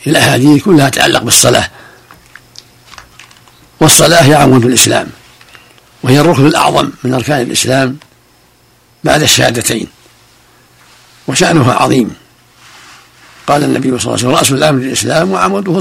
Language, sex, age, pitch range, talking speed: Arabic, male, 60-79, 125-150 Hz, 105 wpm